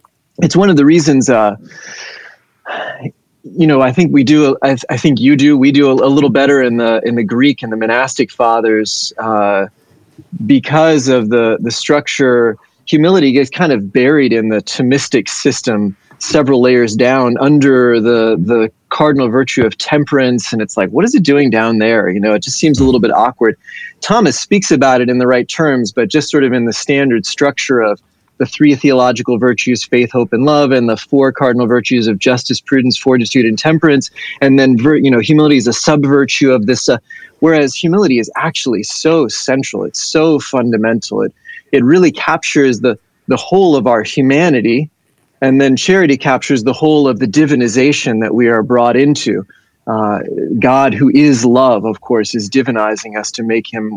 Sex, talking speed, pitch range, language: male, 185 wpm, 115-145 Hz, English